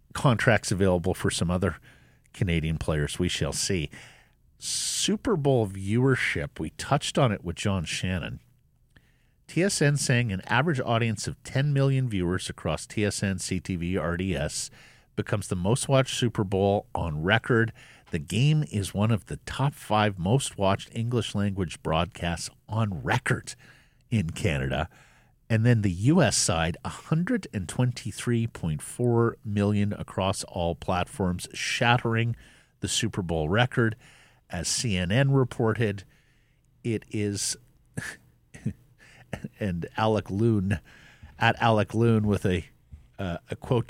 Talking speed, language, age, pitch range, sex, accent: 120 wpm, English, 50-69, 95-130 Hz, male, American